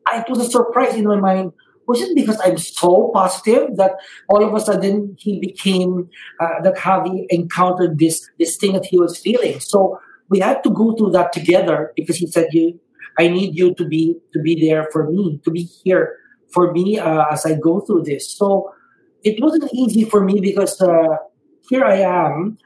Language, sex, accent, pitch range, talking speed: English, male, Filipino, 165-215 Hz, 200 wpm